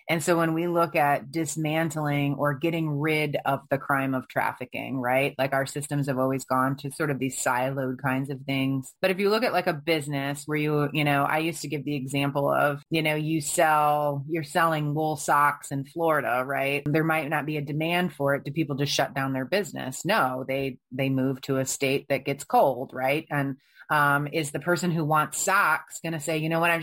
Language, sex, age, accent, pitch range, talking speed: English, female, 30-49, American, 145-180 Hz, 225 wpm